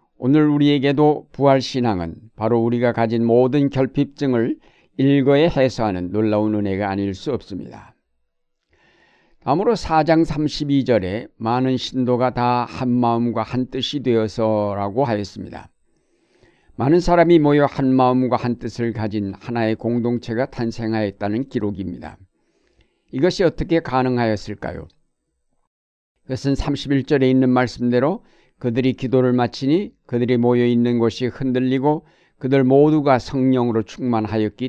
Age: 50-69